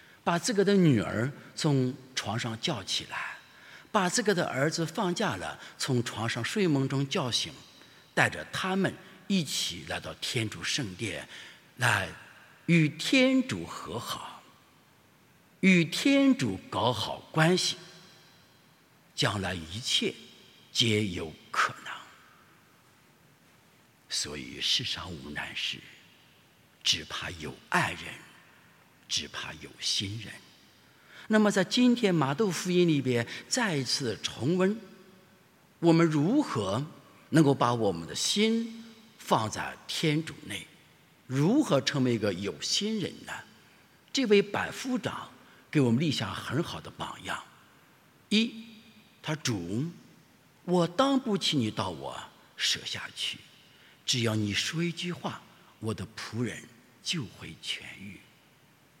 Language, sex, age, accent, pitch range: English, male, 60-79, Chinese, 120-195 Hz